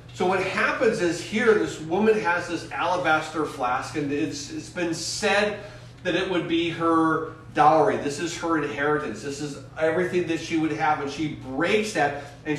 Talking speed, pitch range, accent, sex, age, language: 180 wpm, 155-195 Hz, American, male, 40-59, English